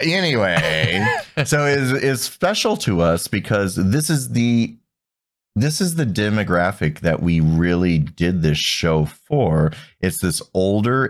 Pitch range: 80-100 Hz